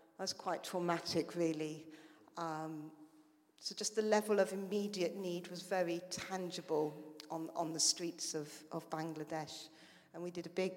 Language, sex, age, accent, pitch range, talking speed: English, female, 50-69, British, 160-185 Hz, 150 wpm